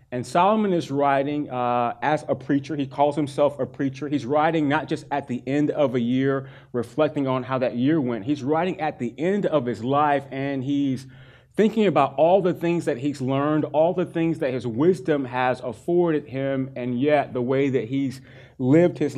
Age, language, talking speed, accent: 30-49, English, 200 wpm, American